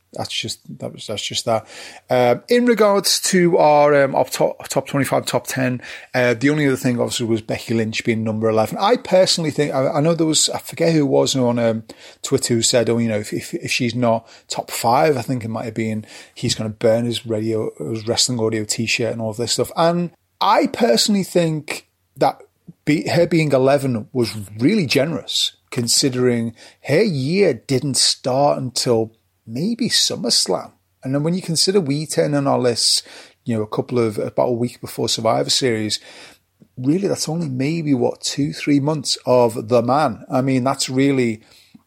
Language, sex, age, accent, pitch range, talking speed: English, male, 30-49, British, 115-145 Hz, 200 wpm